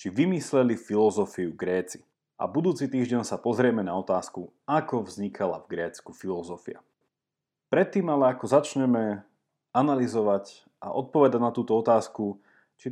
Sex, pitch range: male, 115-150 Hz